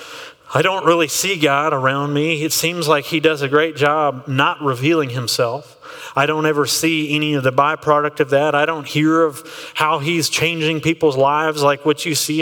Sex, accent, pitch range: male, American, 145-175 Hz